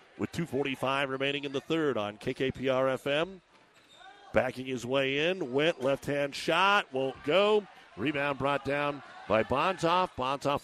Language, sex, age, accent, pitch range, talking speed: English, male, 50-69, American, 130-165 Hz, 130 wpm